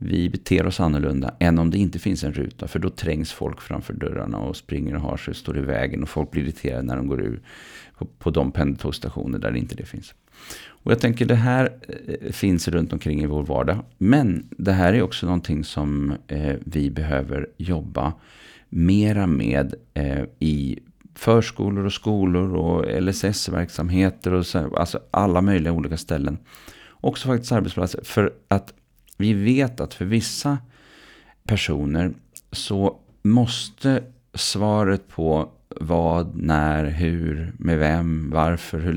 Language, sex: Swedish, male